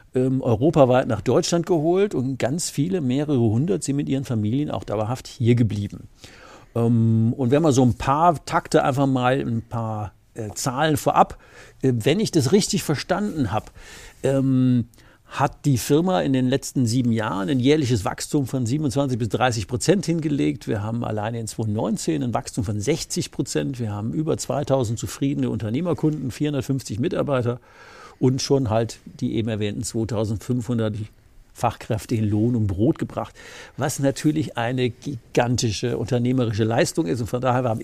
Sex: male